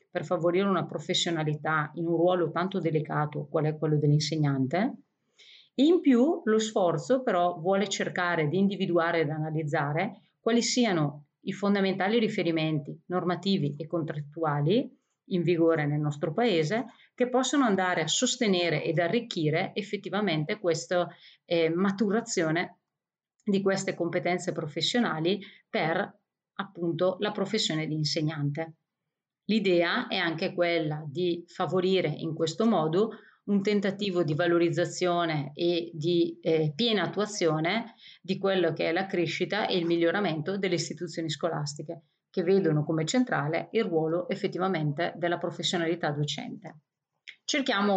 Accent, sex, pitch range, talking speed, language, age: native, female, 160-195 Hz, 125 wpm, Italian, 40-59